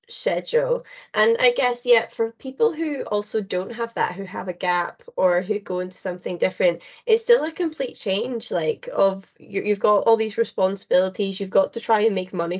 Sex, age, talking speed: female, 10-29, 200 wpm